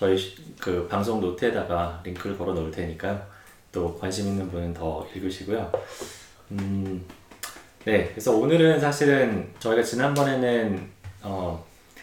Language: Korean